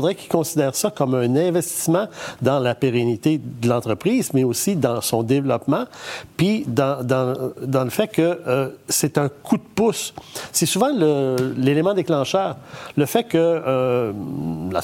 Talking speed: 165 wpm